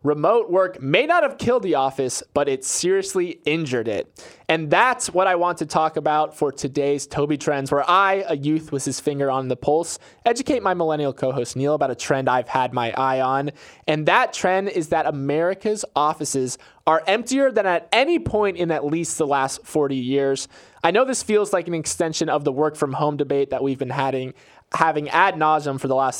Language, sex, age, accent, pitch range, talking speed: English, male, 20-39, American, 140-175 Hz, 210 wpm